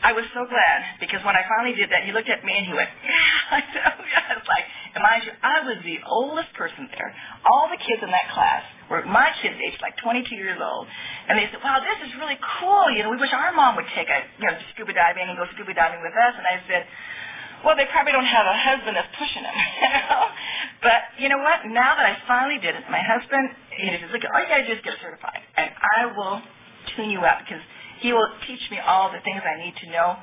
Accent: American